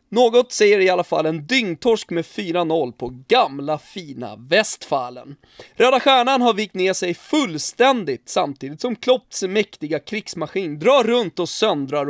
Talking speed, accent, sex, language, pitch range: 140 wpm, native, male, Swedish, 150-210 Hz